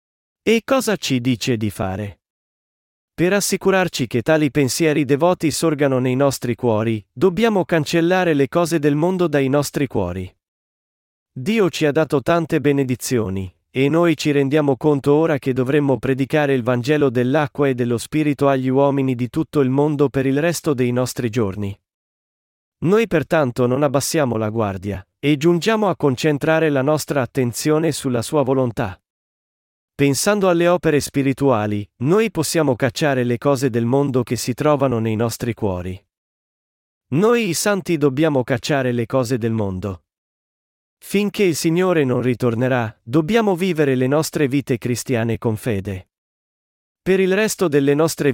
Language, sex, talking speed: Italian, male, 145 wpm